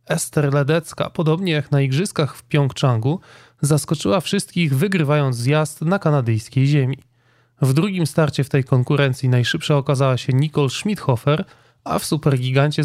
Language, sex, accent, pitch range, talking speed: Polish, male, native, 130-160 Hz, 135 wpm